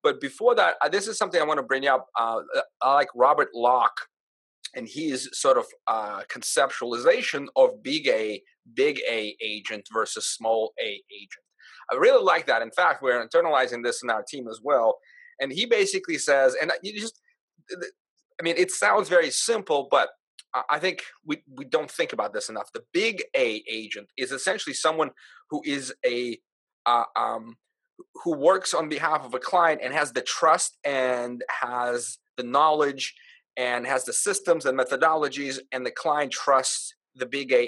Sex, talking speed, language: male, 175 wpm, English